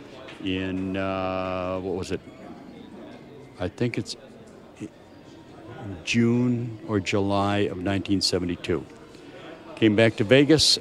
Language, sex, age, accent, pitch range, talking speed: English, male, 60-79, American, 95-120 Hz, 95 wpm